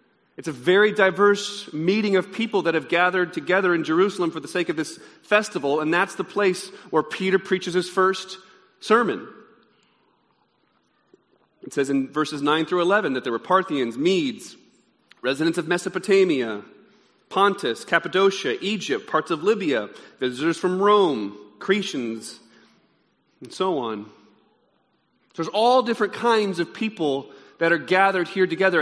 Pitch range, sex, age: 175-215 Hz, male, 40-59